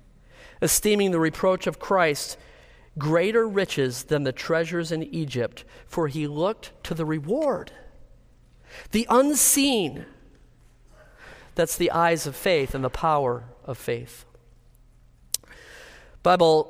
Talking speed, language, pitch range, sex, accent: 110 wpm, English, 140-190 Hz, male, American